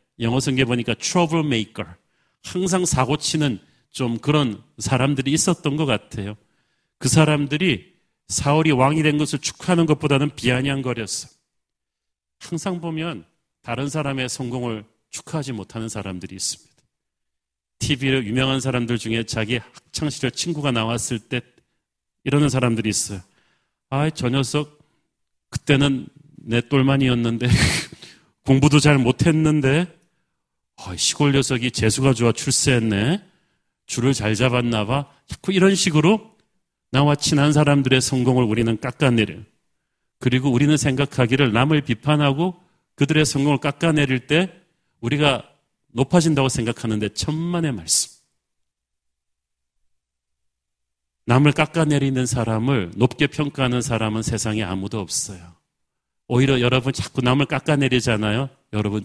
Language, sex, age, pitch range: Korean, male, 40-59, 110-150 Hz